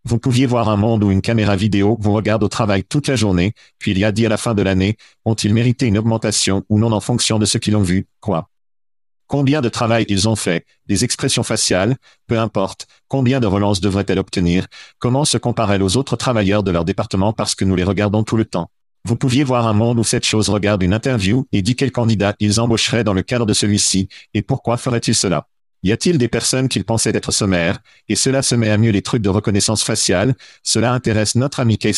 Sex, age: male, 50-69